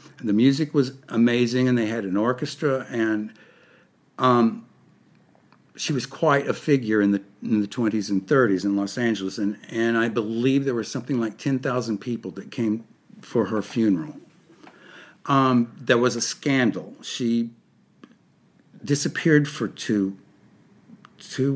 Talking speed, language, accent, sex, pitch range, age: 140 wpm, English, American, male, 110-135 Hz, 60-79